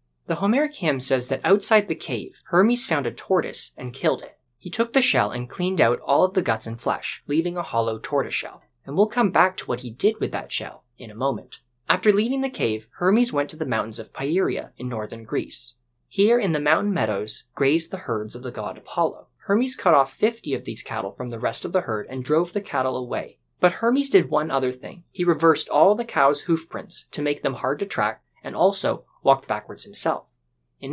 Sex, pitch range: male, 120-185 Hz